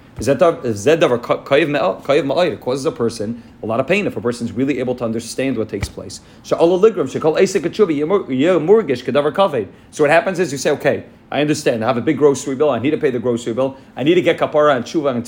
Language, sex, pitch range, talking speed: English, male, 120-175 Hz, 190 wpm